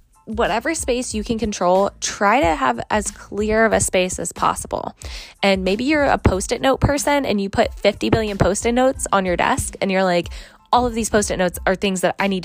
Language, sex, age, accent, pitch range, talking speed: English, female, 20-39, American, 200-260 Hz, 215 wpm